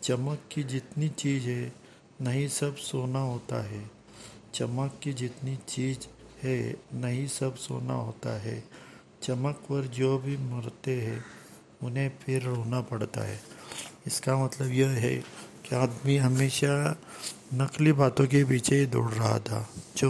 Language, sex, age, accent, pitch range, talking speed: Hindi, male, 50-69, native, 120-135 Hz, 135 wpm